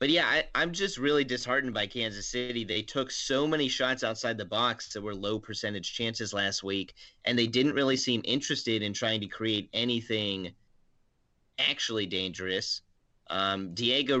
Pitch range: 100-120 Hz